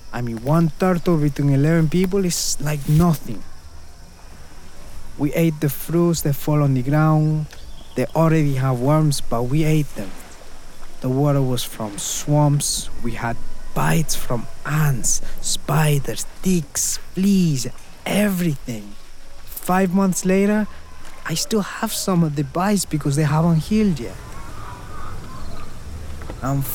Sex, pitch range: male, 115-155 Hz